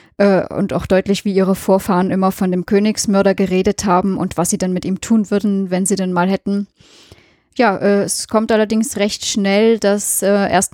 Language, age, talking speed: German, 10-29, 185 wpm